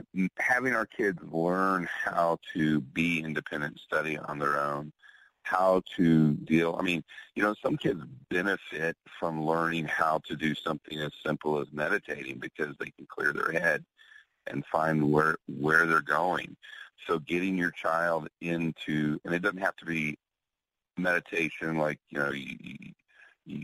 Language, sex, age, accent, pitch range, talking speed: English, male, 40-59, American, 75-85 Hz, 155 wpm